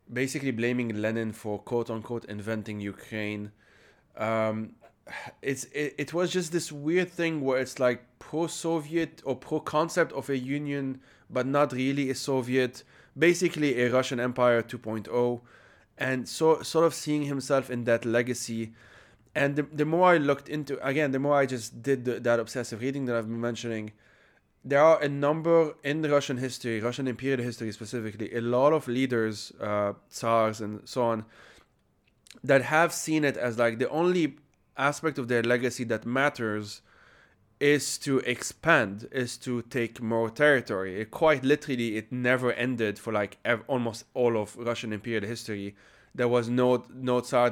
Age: 20-39